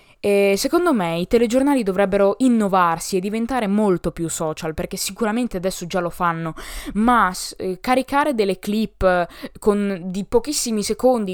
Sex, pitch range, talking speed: female, 190-250 Hz, 145 wpm